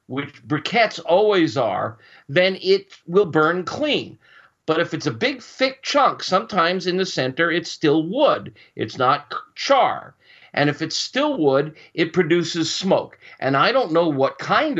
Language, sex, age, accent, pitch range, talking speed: English, male, 50-69, American, 150-210 Hz, 160 wpm